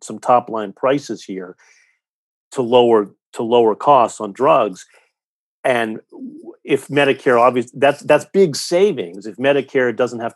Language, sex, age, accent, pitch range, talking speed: English, male, 50-69, American, 110-135 Hz, 140 wpm